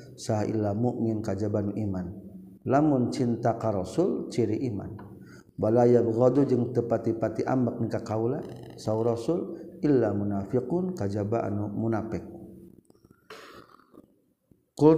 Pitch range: 110-125 Hz